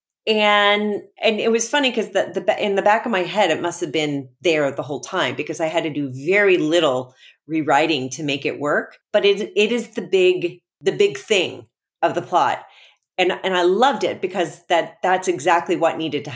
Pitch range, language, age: 170-255 Hz, English, 40-59